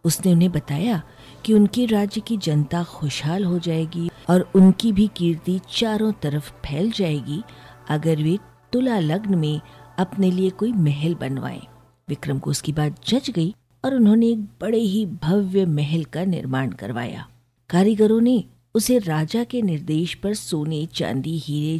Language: Hindi